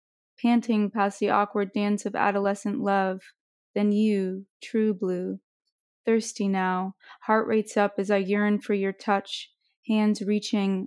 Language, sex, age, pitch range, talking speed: English, female, 20-39, 195-215 Hz, 140 wpm